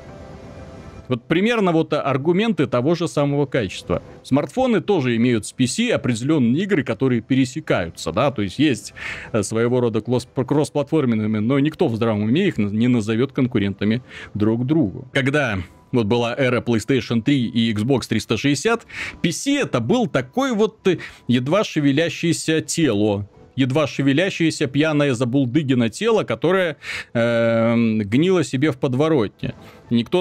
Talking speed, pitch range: 125 wpm, 115-160 Hz